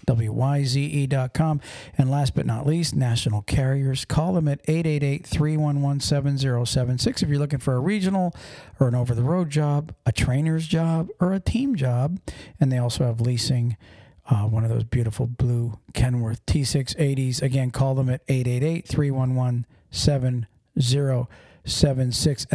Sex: male